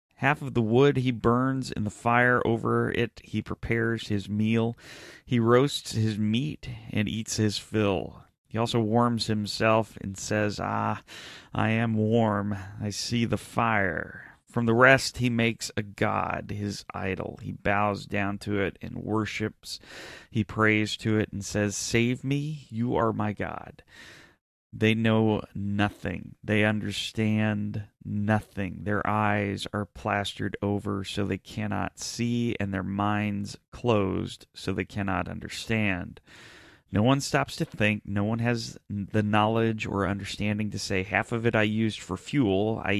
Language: English